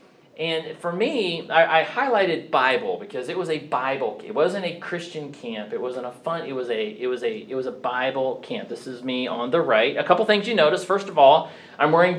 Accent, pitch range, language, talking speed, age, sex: American, 125-170 Hz, English, 235 wpm, 40-59, male